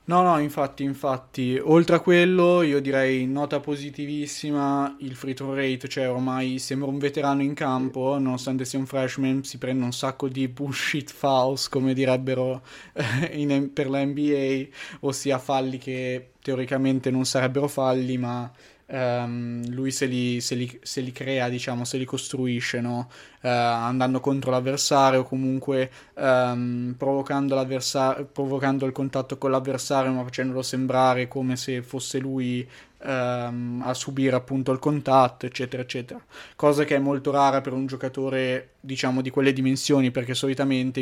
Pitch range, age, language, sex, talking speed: 130-140 Hz, 20-39, Italian, male, 140 wpm